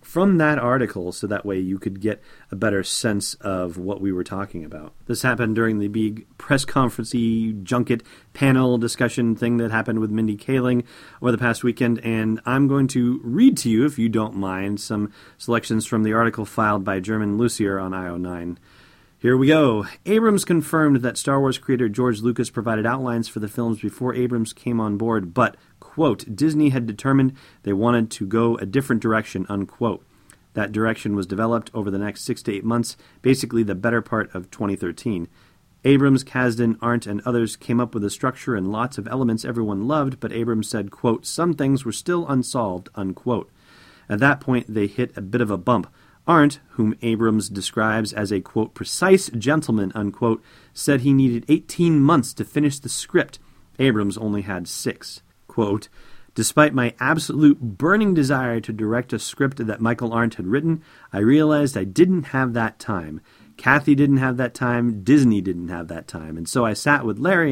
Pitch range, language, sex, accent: 105-130 Hz, English, male, American